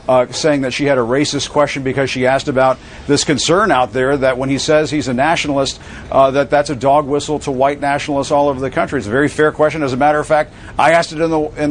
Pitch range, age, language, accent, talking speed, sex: 135-155 Hz, 50-69, English, American, 265 wpm, male